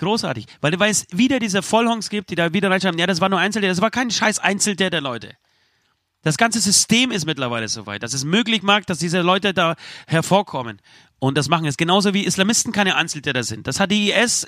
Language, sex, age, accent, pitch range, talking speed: German, male, 30-49, German, 125-195 Hz, 225 wpm